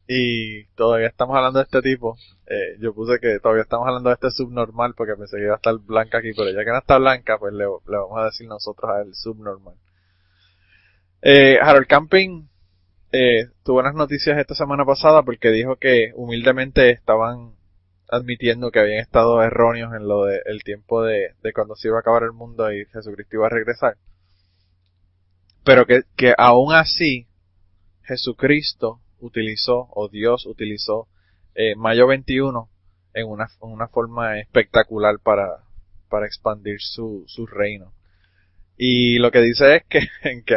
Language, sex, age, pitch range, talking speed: Spanish, male, 20-39, 95-120 Hz, 165 wpm